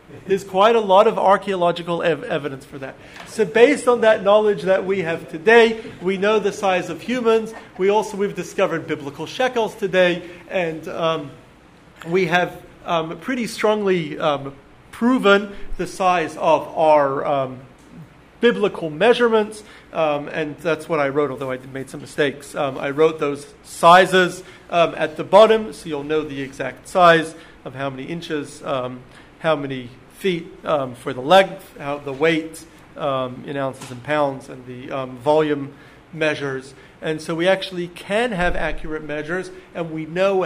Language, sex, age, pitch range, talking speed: English, male, 40-59, 145-190 Hz, 160 wpm